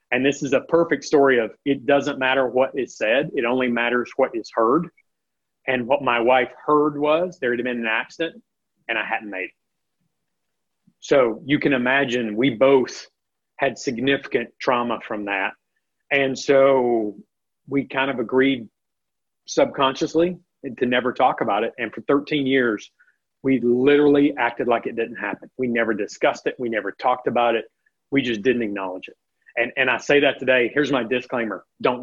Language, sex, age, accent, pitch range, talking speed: English, male, 40-59, American, 125-145 Hz, 175 wpm